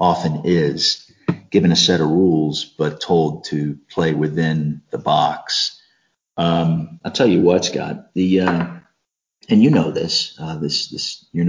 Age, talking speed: 40-59, 155 wpm